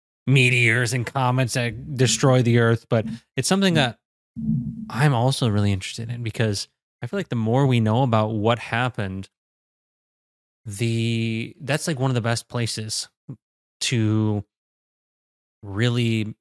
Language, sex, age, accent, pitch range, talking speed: English, male, 20-39, American, 105-125 Hz, 135 wpm